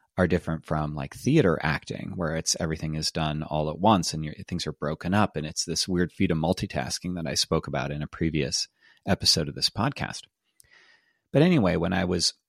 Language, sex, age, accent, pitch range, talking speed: English, male, 30-49, American, 80-95 Hz, 205 wpm